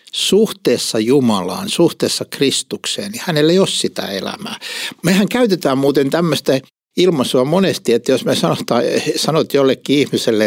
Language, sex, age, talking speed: Finnish, male, 60-79, 130 wpm